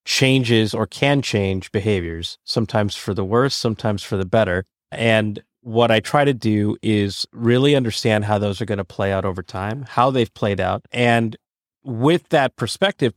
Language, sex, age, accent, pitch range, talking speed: English, male, 30-49, American, 105-130 Hz, 180 wpm